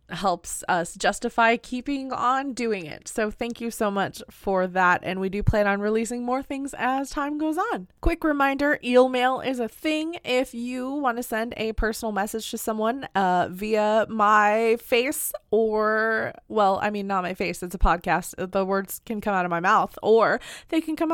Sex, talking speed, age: female, 195 wpm, 20-39